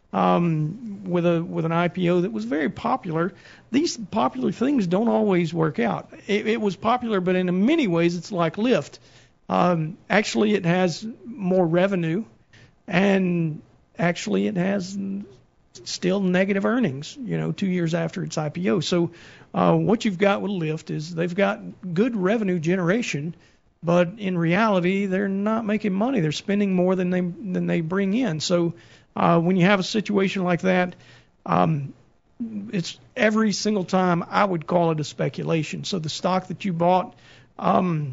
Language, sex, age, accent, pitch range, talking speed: English, male, 50-69, American, 165-195 Hz, 165 wpm